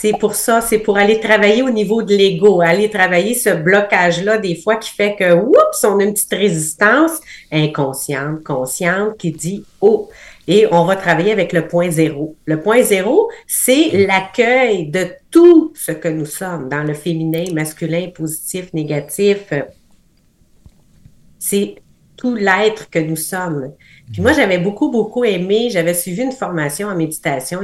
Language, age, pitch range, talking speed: French, 40-59, 170-230 Hz, 160 wpm